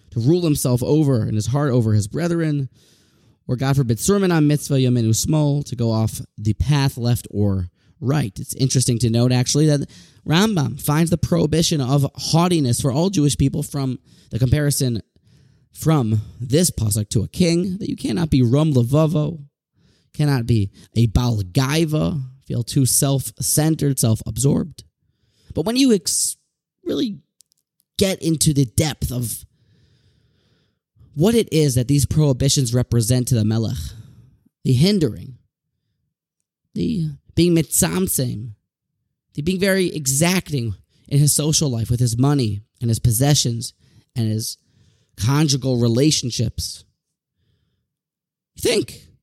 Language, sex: English, male